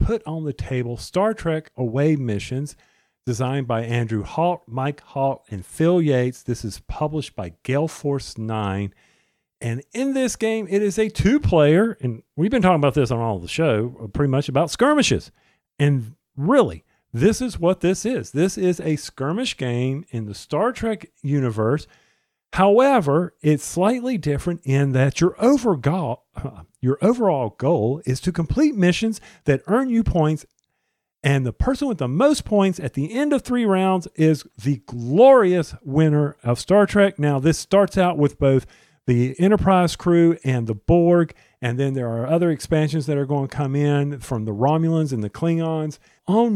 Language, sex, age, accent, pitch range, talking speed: English, male, 40-59, American, 130-185 Hz, 170 wpm